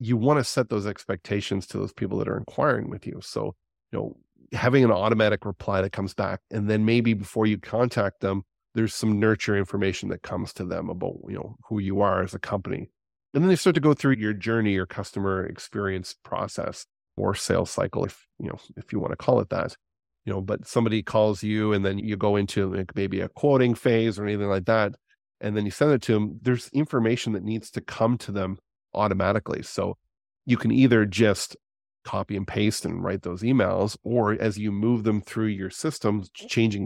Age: 30-49